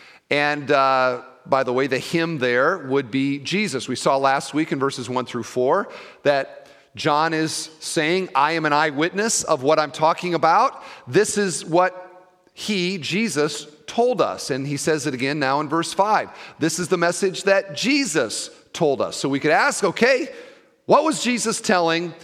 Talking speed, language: 180 wpm, English